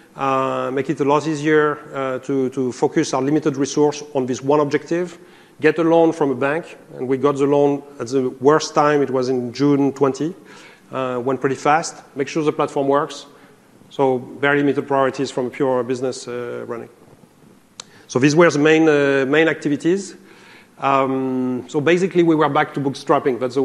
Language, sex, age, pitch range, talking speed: English, male, 40-59, 130-155 Hz, 185 wpm